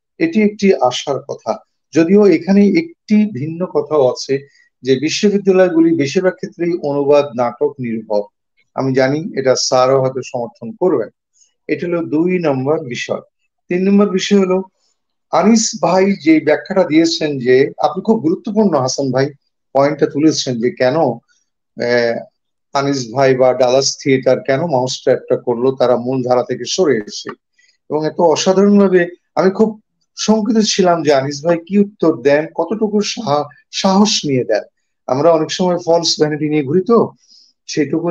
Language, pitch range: Bengali, 140-195 Hz